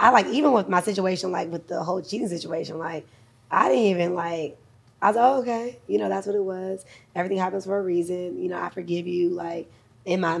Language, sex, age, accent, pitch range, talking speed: English, female, 20-39, American, 165-185 Hz, 235 wpm